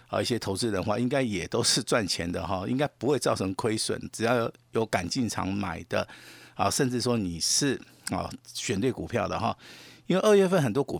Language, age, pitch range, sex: Chinese, 50-69, 100-125 Hz, male